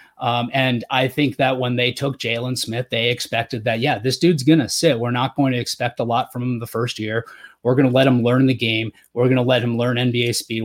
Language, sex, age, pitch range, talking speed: English, male, 30-49, 120-140 Hz, 265 wpm